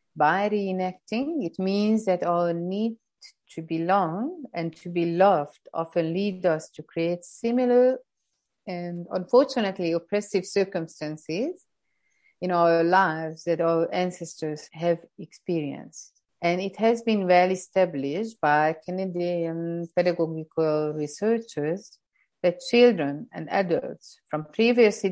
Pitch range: 155-195 Hz